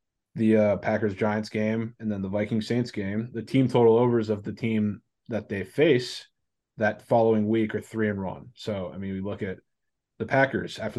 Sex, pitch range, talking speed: male, 100-110 Hz, 190 wpm